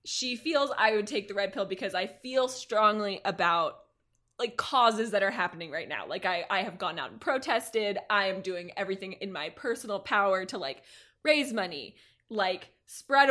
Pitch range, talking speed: 195-255 Hz, 190 wpm